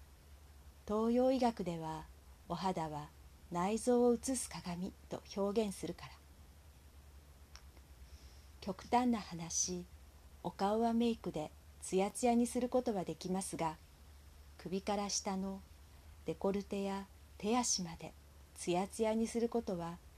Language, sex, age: Japanese, female, 40-59